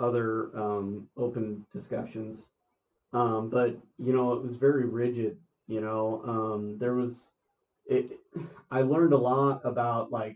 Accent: American